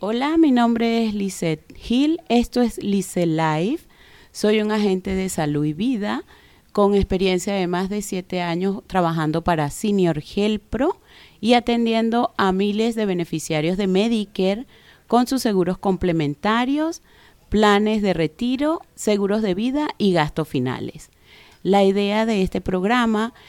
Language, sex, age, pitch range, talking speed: Spanish, female, 40-59, 175-225 Hz, 140 wpm